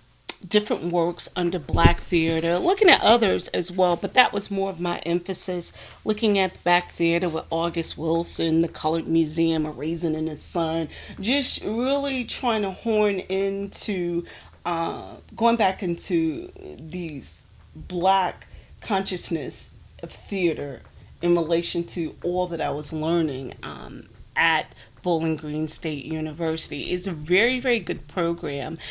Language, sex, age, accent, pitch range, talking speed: English, female, 40-59, American, 165-210 Hz, 140 wpm